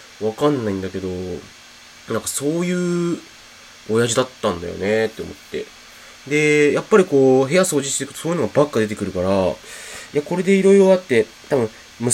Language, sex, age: Japanese, male, 20-39